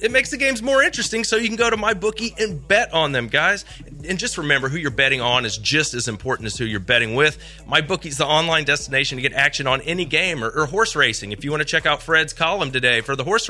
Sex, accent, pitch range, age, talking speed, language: male, American, 125-165 Hz, 30-49, 270 wpm, English